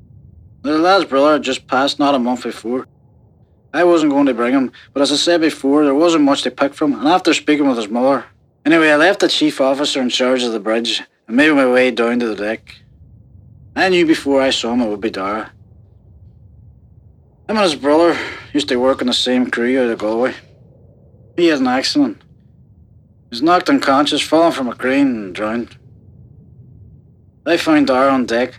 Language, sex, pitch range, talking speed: English, male, 115-150 Hz, 200 wpm